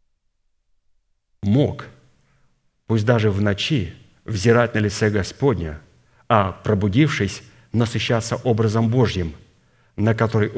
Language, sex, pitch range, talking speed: Russian, male, 100-120 Hz, 90 wpm